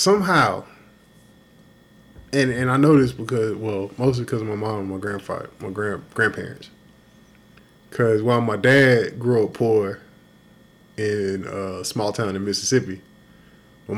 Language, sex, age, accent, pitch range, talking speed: English, male, 20-39, American, 100-115 Hz, 140 wpm